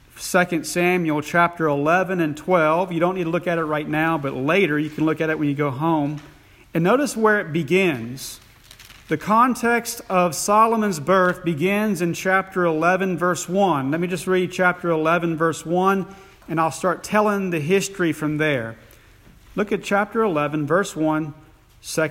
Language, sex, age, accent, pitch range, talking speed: English, male, 40-59, American, 155-190 Hz, 170 wpm